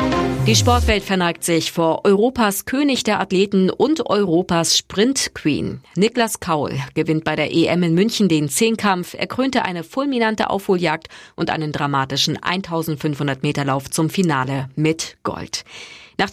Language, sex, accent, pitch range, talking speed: German, female, German, 155-215 Hz, 140 wpm